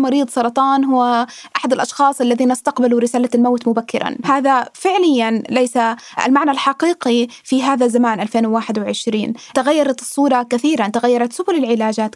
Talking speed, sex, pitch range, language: 125 wpm, female, 235-290 Hz, Arabic